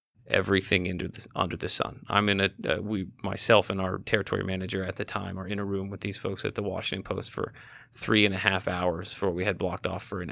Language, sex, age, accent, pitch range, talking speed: English, male, 30-49, American, 95-110 Hz, 255 wpm